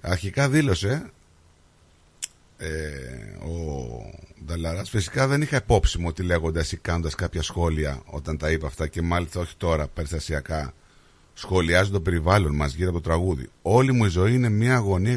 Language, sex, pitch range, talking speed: Greek, male, 80-125 Hz, 160 wpm